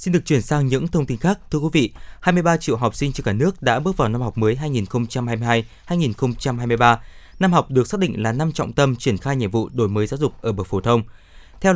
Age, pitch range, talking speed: 20-39, 115-150 Hz, 240 wpm